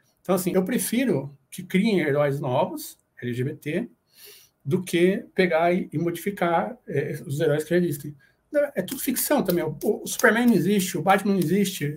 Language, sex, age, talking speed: Portuguese, male, 60-79, 160 wpm